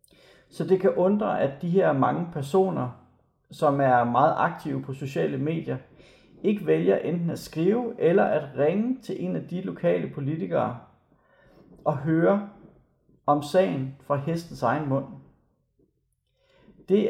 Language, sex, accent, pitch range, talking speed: Danish, male, native, 135-185 Hz, 135 wpm